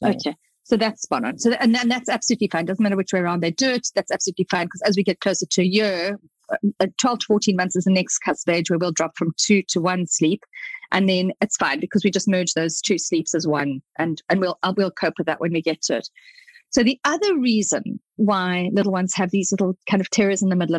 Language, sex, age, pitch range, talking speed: English, female, 40-59, 180-220 Hz, 265 wpm